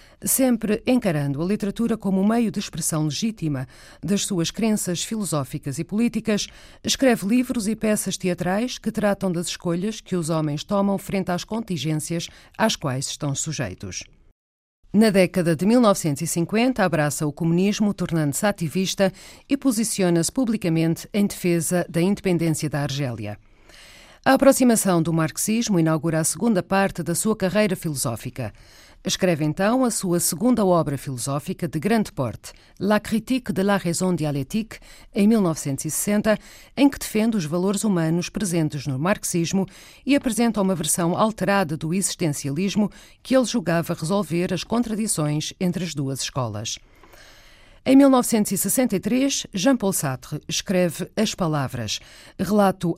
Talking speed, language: 135 wpm, Portuguese